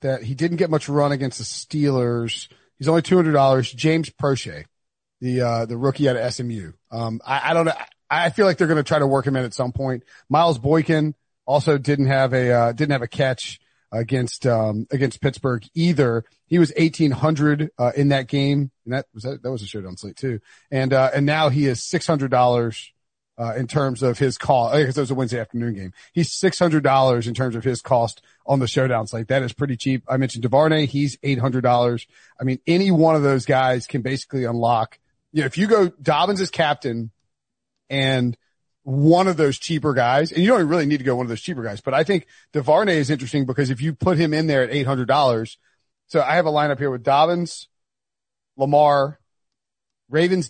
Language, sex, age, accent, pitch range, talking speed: English, male, 40-59, American, 125-150 Hz, 215 wpm